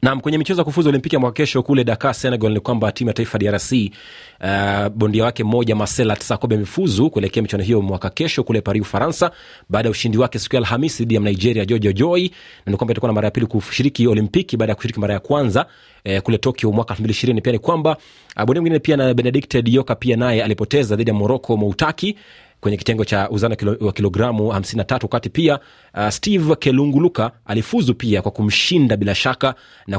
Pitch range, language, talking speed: 105-130 Hz, Swahili, 180 wpm